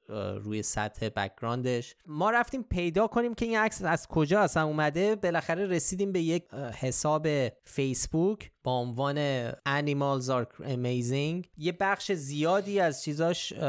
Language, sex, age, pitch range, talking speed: Persian, male, 30-49, 115-155 Hz, 130 wpm